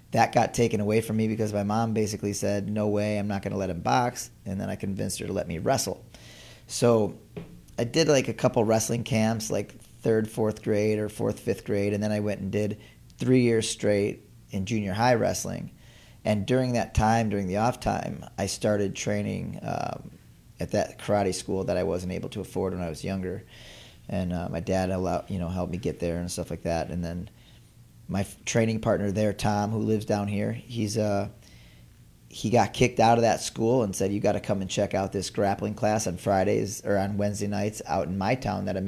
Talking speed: 220 wpm